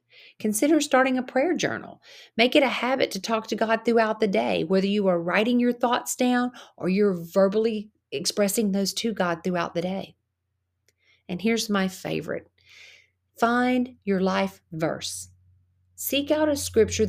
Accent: American